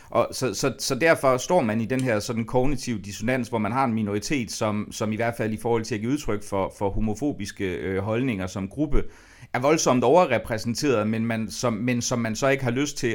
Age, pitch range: 30-49, 105-130 Hz